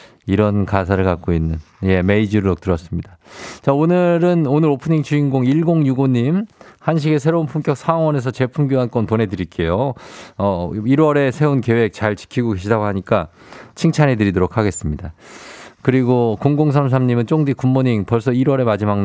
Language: Korean